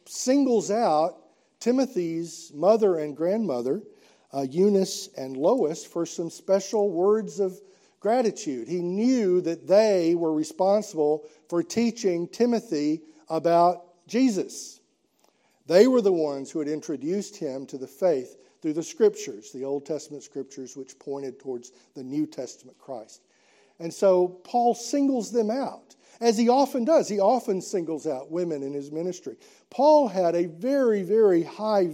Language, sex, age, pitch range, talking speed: English, male, 50-69, 160-230 Hz, 145 wpm